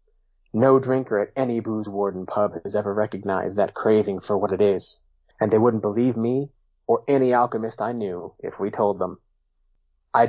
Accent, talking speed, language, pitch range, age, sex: American, 180 wpm, English, 95-120 Hz, 30-49, male